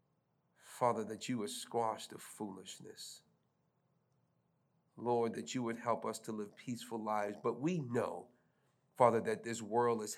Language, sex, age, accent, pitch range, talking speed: English, male, 40-59, American, 110-155 Hz, 145 wpm